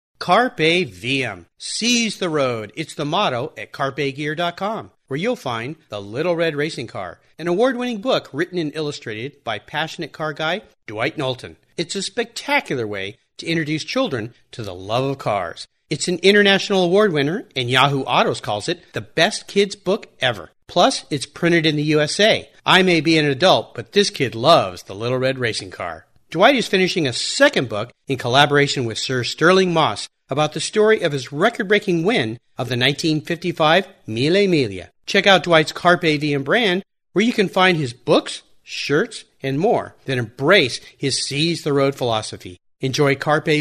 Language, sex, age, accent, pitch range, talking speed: English, male, 40-59, American, 130-190 Hz, 170 wpm